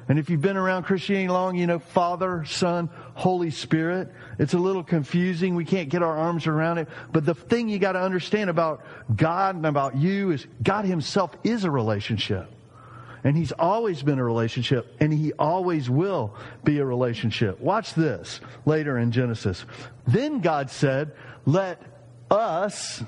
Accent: American